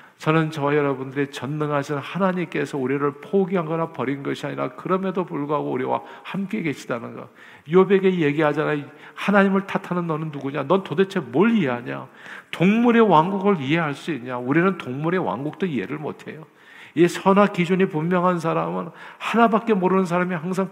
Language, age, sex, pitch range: Korean, 50-69, male, 120-175 Hz